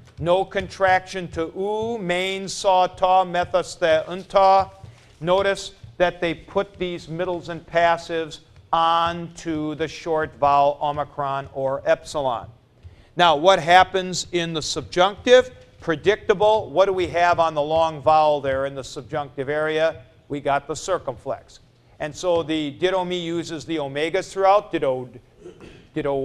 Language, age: English, 50-69